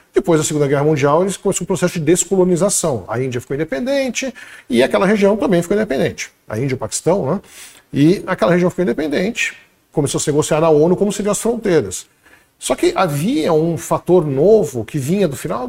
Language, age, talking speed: Portuguese, 50-69, 190 wpm